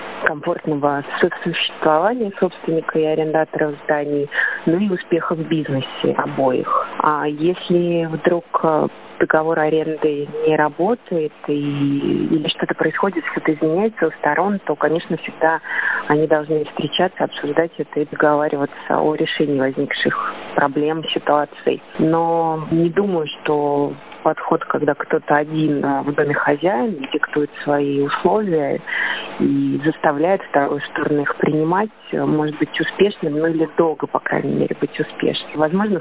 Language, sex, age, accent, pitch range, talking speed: Russian, female, 30-49, native, 150-170 Hz, 120 wpm